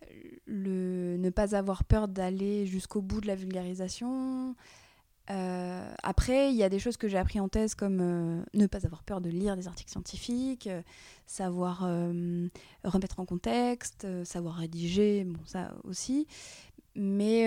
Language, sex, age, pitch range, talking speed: French, female, 20-39, 185-220 Hz, 160 wpm